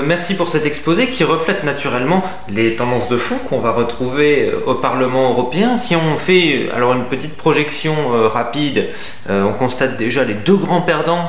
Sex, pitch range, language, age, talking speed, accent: male, 115-150 Hz, French, 20-39, 180 wpm, French